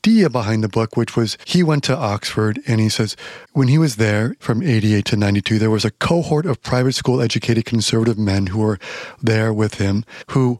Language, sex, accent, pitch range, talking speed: English, male, American, 110-130 Hz, 205 wpm